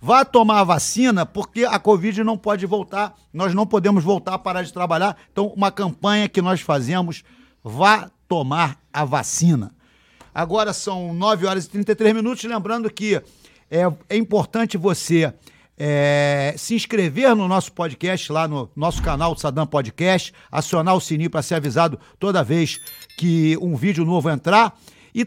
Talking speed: 160 wpm